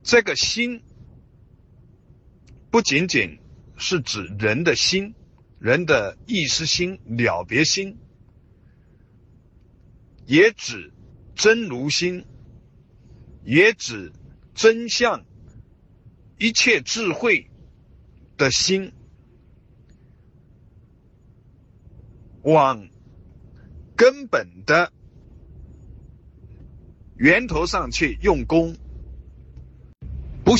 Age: 60-79